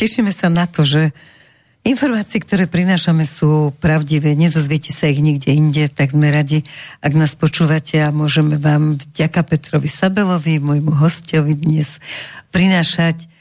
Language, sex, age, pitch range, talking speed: Slovak, female, 50-69, 150-170 Hz, 140 wpm